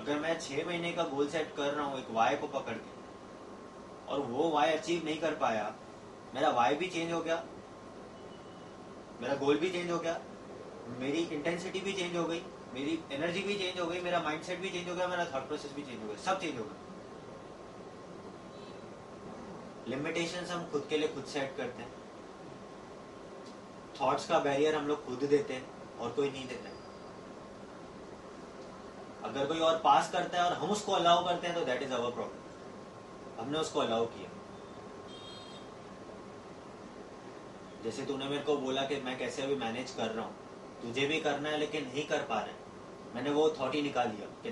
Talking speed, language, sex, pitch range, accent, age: 180 wpm, Hindi, male, 140-170 Hz, native, 30-49